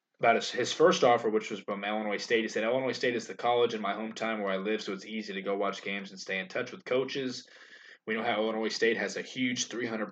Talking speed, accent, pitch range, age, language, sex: 265 wpm, American, 100-120 Hz, 20-39, English, male